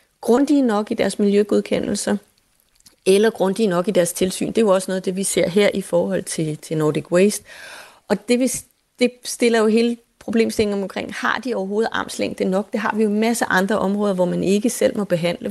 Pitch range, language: 185-230 Hz, Danish